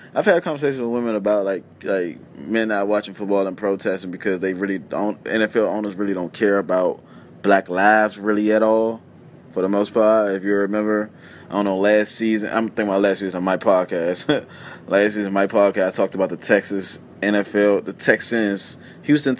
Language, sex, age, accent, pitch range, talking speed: English, male, 20-39, American, 95-110 Hz, 195 wpm